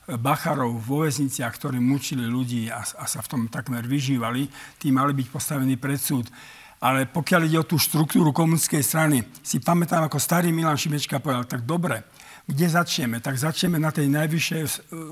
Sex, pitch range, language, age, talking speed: male, 135-160 Hz, Slovak, 50-69, 170 wpm